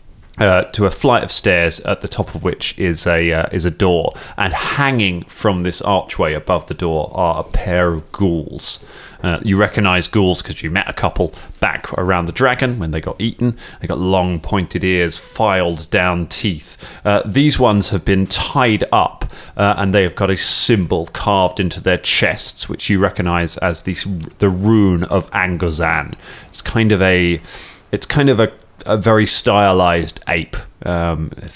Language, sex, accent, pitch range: English, male, British, 85-100 Hz